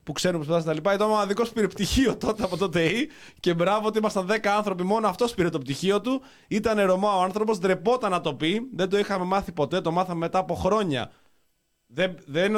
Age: 20-39